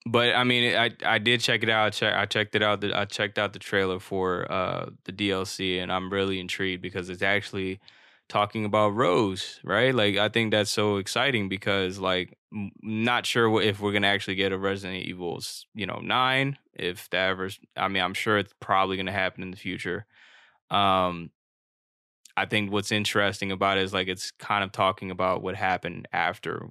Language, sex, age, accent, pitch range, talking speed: English, male, 20-39, American, 95-105 Hz, 195 wpm